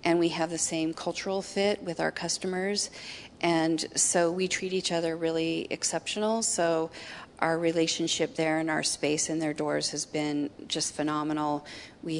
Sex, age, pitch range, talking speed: female, 40-59, 155-175 Hz, 160 wpm